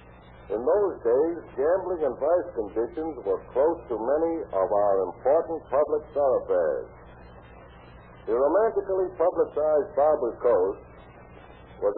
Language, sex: English, male